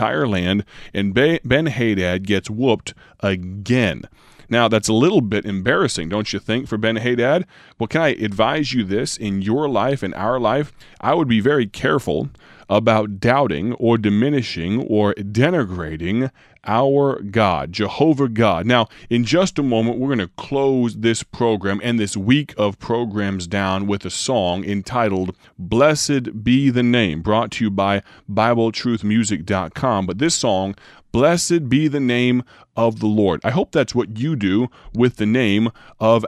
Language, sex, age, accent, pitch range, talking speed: English, male, 30-49, American, 100-125 Hz, 160 wpm